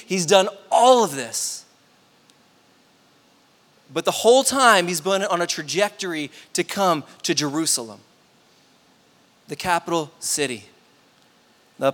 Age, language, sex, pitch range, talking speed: 20-39, English, male, 140-180 Hz, 110 wpm